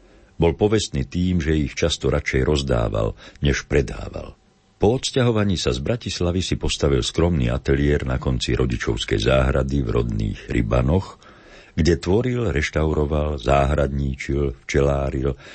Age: 60-79